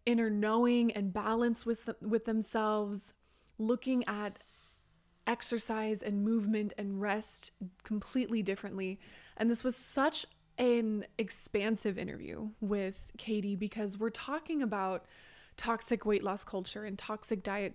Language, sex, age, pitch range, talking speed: English, female, 20-39, 200-225 Hz, 120 wpm